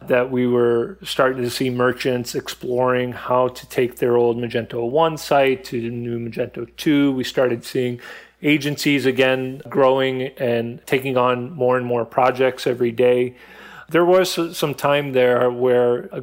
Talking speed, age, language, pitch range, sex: 160 wpm, 40-59, English, 120-135 Hz, male